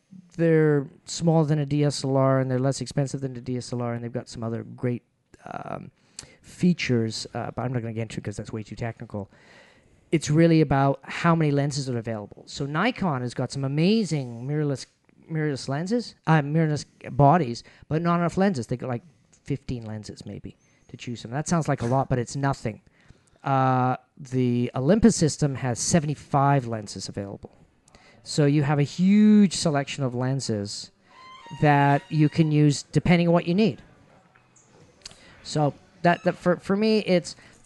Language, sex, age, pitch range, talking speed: English, male, 50-69, 125-160 Hz, 170 wpm